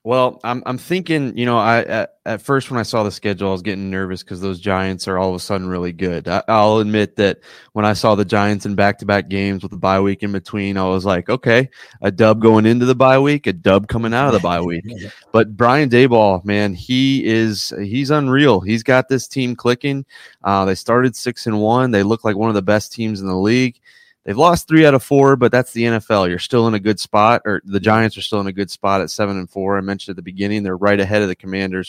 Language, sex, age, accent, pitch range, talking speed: English, male, 20-39, American, 95-120 Hz, 255 wpm